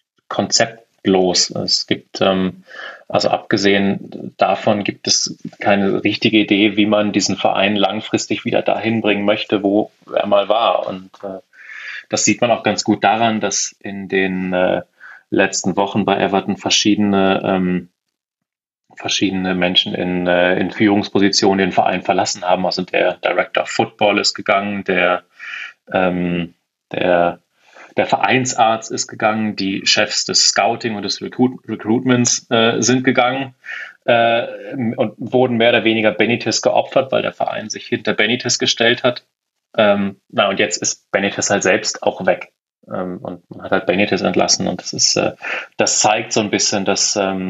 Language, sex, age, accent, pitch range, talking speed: German, male, 30-49, German, 95-115 Hz, 150 wpm